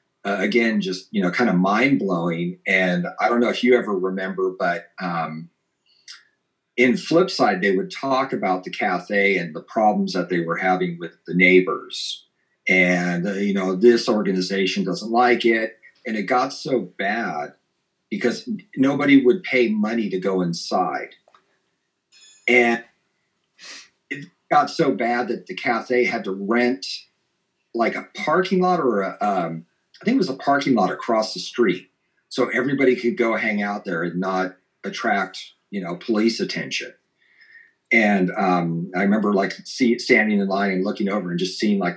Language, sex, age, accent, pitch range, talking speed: English, male, 40-59, American, 90-115 Hz, 165 wpm